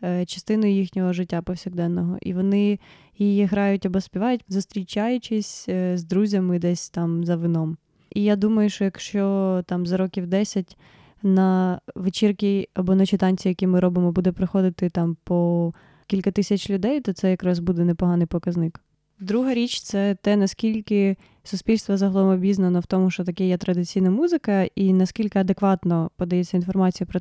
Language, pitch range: Ukrainian, 180-205 Hz